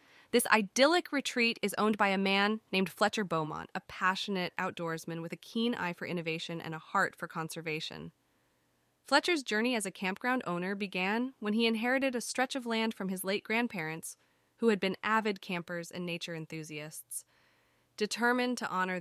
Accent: American